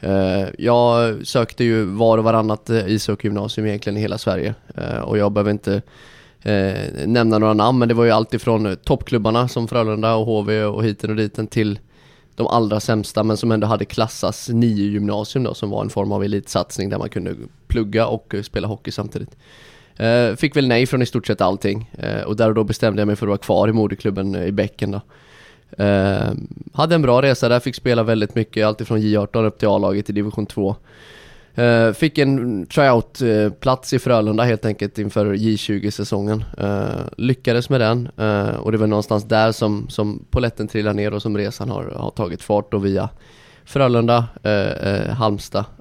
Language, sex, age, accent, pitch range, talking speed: English, male, 20-39, Swedish, 105-120 Hz, 180 wpm